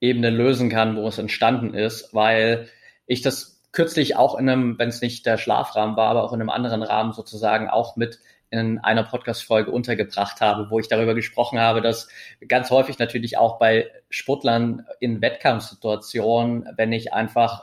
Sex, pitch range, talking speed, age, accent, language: male, 115-125 Hz, 175 wpm, 20-39, German, German